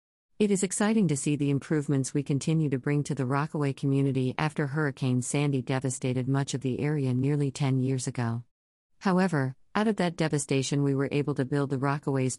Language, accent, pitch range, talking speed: English, American, 130-155 Hz, 190 wpm